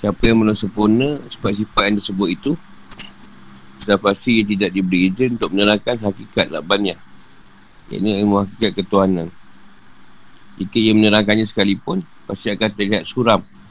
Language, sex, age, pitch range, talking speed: Malay, male, 50-69, 100-115 Hz, 125 wpm